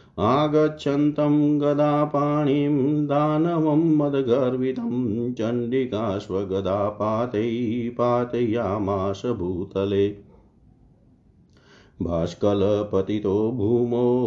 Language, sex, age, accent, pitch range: Hindi, male, 50-69, native, 100-125 Hz